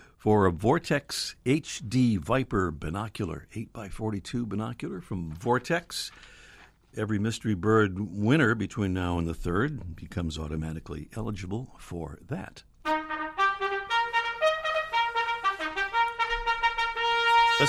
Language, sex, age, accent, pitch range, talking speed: English, male, 60-79, American, 95-150 Hz, 85 wpm